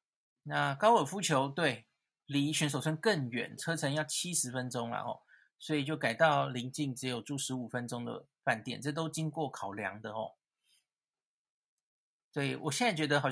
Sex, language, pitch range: male, Chinese, 130-160 Hz